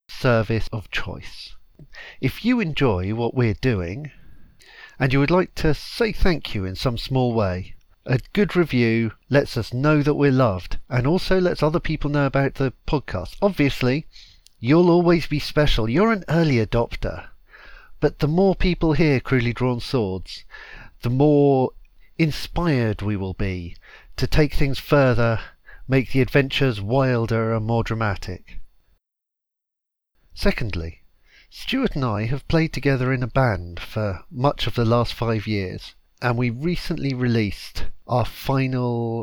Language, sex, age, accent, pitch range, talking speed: English, male, 50-69, British, 110-150 Hz, 145 wpm